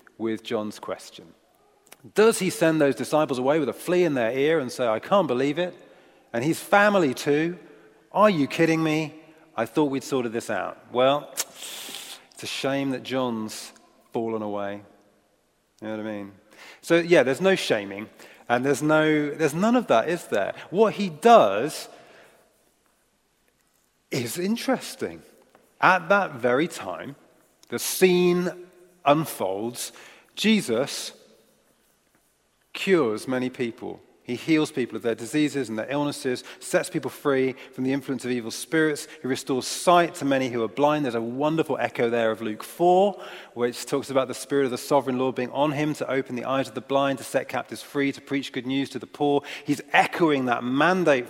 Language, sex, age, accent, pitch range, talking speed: English, male, 40-59, British, 120-160 Hz, 170 wpm